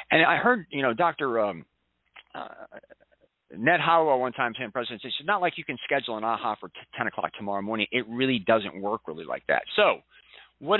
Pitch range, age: 120-170 Hz, 40-59